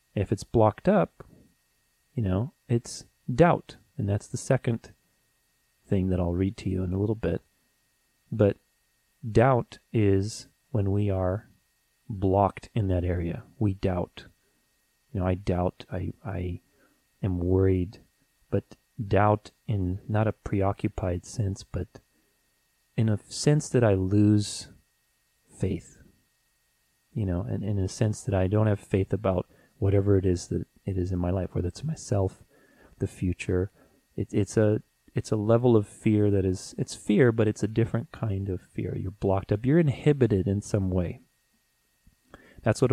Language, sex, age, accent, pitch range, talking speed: English, male, 30-49, American, 95-115 Hz, 155 wpm